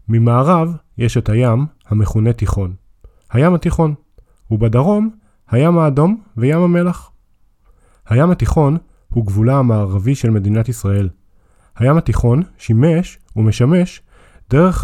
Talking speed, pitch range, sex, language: 105 wpm, 105-150 Hz, male, Hebrew